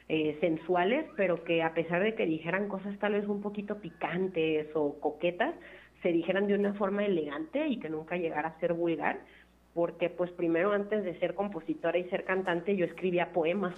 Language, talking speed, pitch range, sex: Spanish, 185 wpm, 165-195 Hz, female